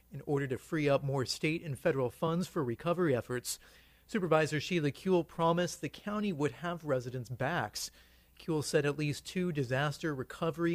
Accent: American